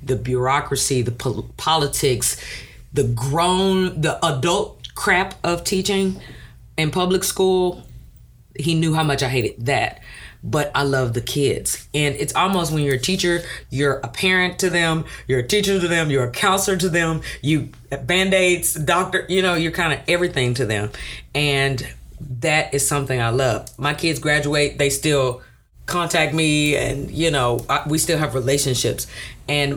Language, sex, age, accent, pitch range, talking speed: English, female, 40-59, American, 125-165 Hz, 160 wpm